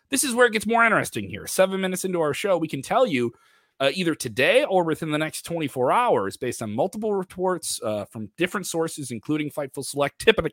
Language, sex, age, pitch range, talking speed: English, male, 30-49, 130-195 Hz, 230 wpm